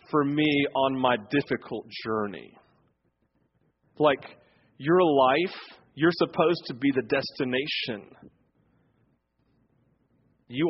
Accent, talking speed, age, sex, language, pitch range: American, 90 wpm, 40-59, male, English, 115-145 Hz